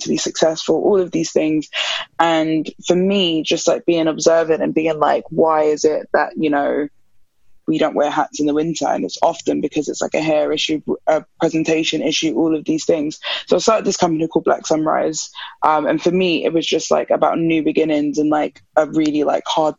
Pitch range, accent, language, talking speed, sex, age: 155-185 Hz, British, English, 215 wpm, female, 20-39